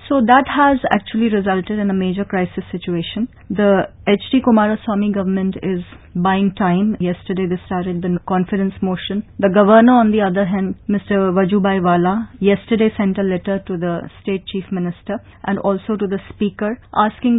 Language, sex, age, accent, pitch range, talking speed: English, female, 30-49, Indian, 195-230 Hz, 160 wpm